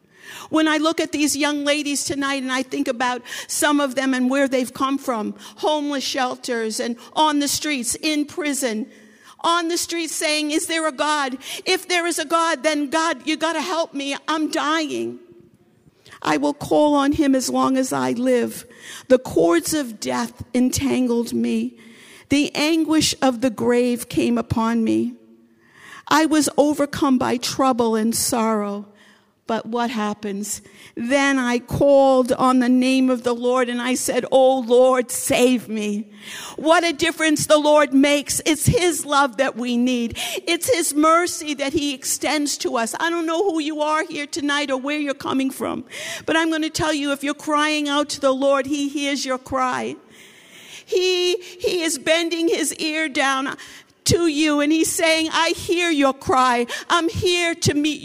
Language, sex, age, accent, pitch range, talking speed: English, female, 50-69, American, 245-315 Hz, 175 wpm